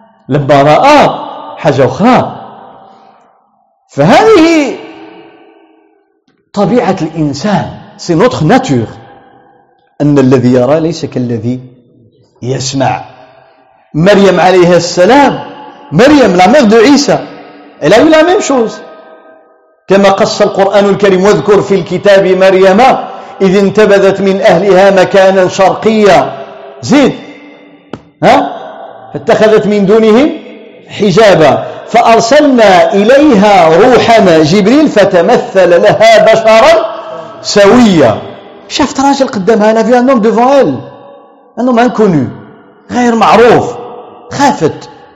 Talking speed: 85 wpm